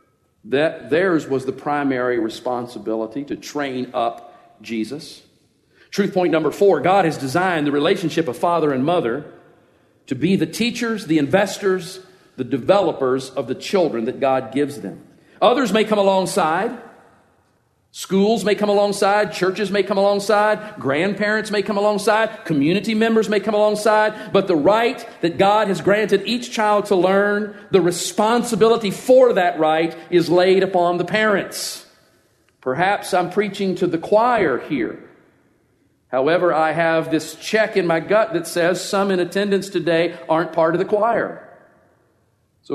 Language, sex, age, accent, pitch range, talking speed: English, male, 50-69, American, 175-225 Hz, 150 wpm